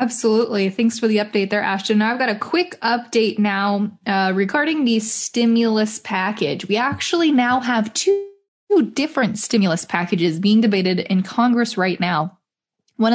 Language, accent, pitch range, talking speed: English, American, 200-240 Hz, 150 wpm